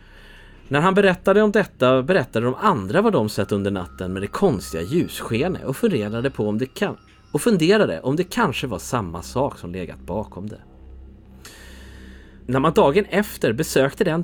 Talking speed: 175 wpm